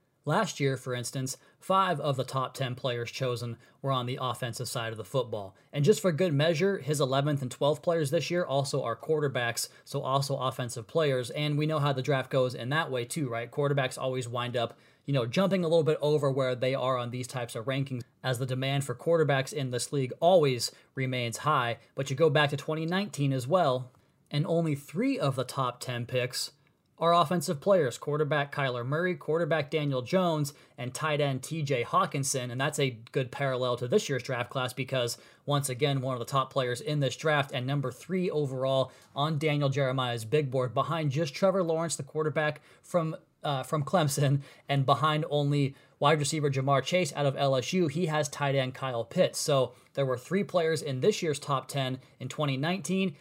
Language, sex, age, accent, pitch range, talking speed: English, male, 20-39, American, 130-155 Hz, 200 wpm